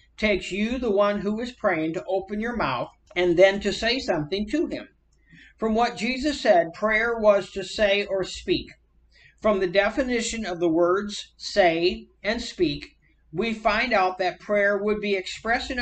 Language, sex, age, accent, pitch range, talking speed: English, male, 50-69, American, 180-225 Hz, 170 wpm